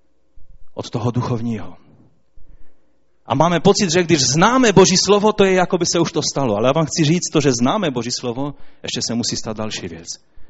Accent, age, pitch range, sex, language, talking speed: native, 30-49, 105-145 Hz, male, Czech, 200 wpm